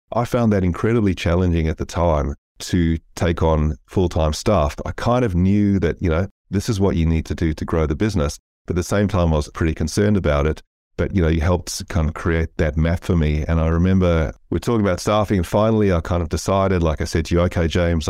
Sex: male